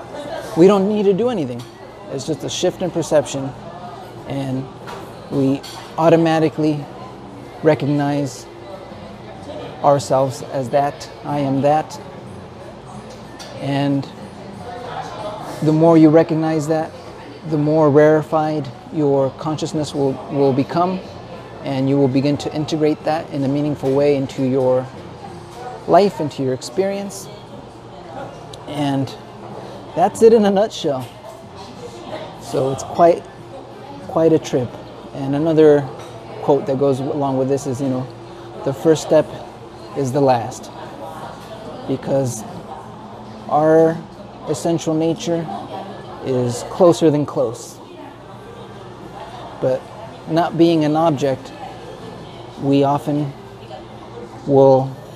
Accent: American